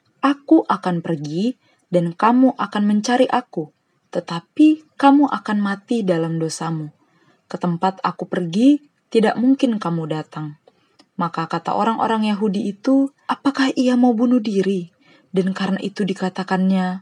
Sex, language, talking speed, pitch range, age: female, Indonesian, 125 wpm, 170-215 Hz, 20-39